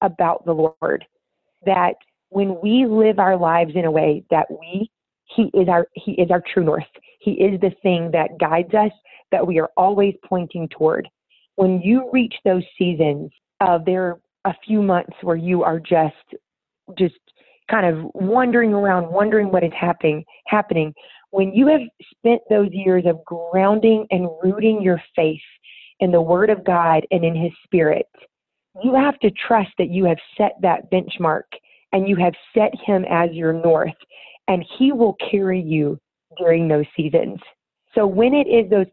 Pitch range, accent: 170-205 Hz, American